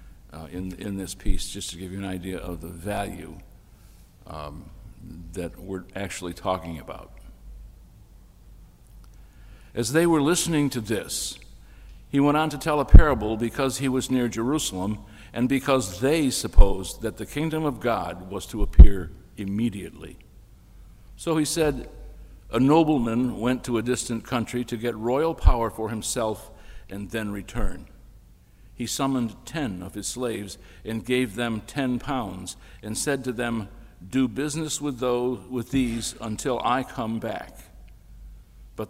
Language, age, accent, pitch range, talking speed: English, 60-79, American, 100-130 Hz, 145 wpm